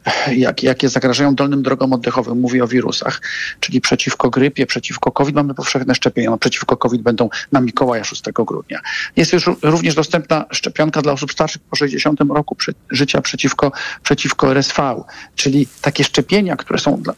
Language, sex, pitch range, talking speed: Polish, male, 130-165 Hz, 160 wpm